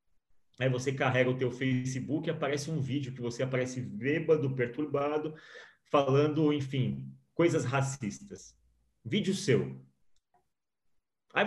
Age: 30-49